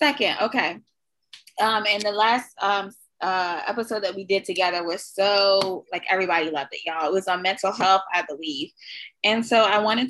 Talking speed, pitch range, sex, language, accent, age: 185 wpm, 180-220 Hz, female, English, American, 20-39